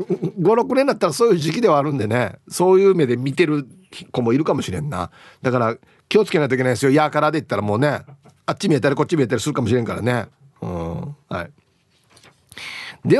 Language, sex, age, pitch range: Japanese, male, 40-59, 120-170 Hz